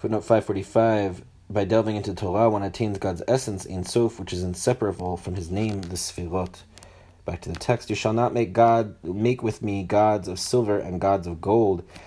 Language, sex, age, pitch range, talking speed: English, male, 30-49, 90-110 Hz, 210 wpm